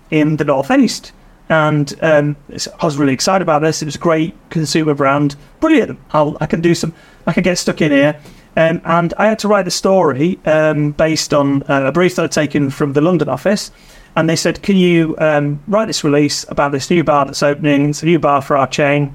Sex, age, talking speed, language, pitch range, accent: male, 30-49, 230 wpm, English, 150-175 Hz, British